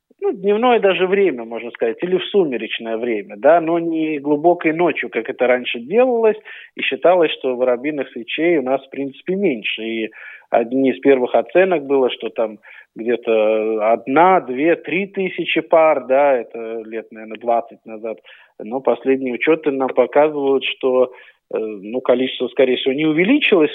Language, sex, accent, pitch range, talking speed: Russian, male, native, 125-180 Hz, 150 wpm